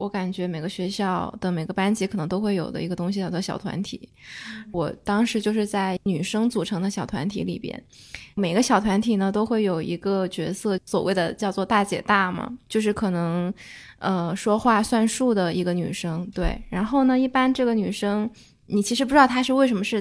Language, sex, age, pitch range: Chinese, female, 20-39, 185-215 Hz